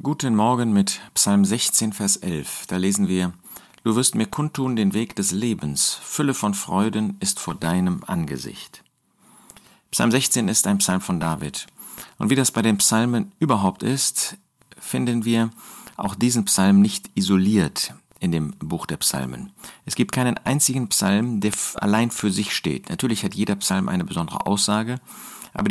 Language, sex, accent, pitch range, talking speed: German, male, German, 100-140 Hz, 165 wpm